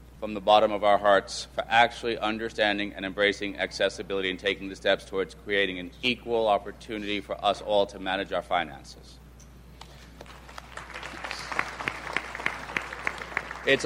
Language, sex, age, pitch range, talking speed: English, male, 40-59, 95-120 Hz, 125 wpm